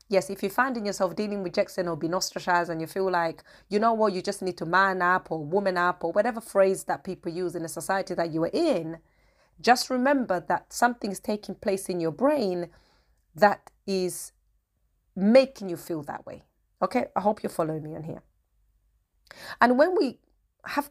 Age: 30-49